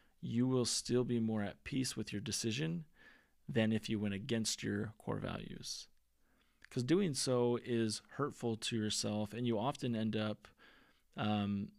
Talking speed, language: 160 wpm, English